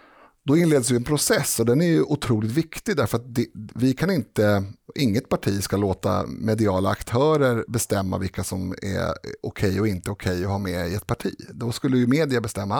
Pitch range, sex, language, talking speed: 100-130 Hz, male, Swedish, 195 wpm